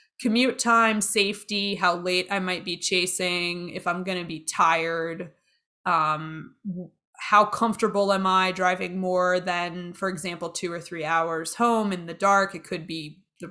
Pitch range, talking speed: 175-205 Hz, 160 wpm